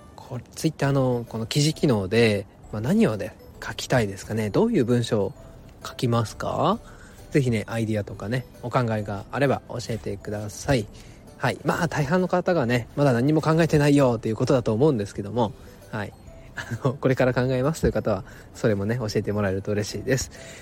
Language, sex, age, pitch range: Japanese, male, 20-39, 105-140 Hz